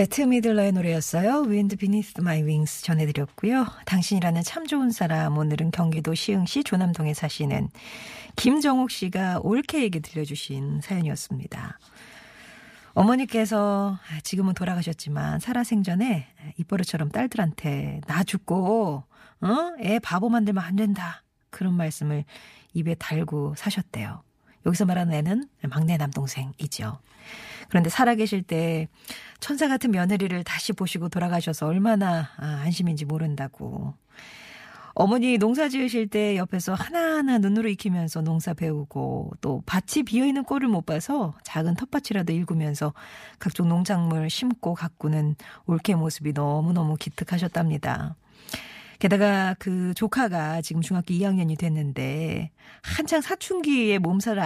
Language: Korean